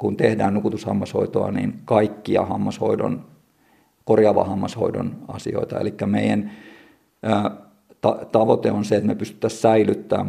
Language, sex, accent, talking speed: Finnish, male, native, 105 wpm